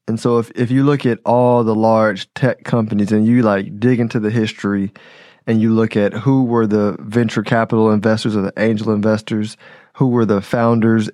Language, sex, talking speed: English, male, 200 wpm